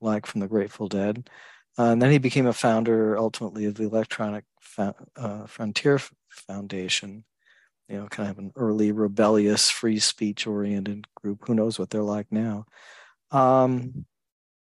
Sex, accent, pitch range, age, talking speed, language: male, American, 110-130 Hz, 40-59, 150 wpm, English